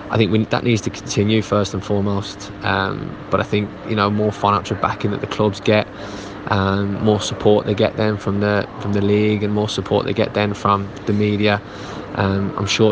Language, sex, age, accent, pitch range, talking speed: English, male, 20-39, British, 100-105 Hz, 215 wpm